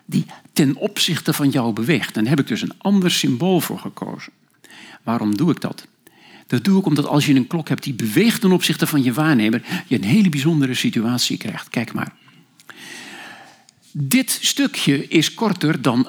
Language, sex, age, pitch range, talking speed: Dutch, male, 50-69, 135-185 Hz, 180 wpm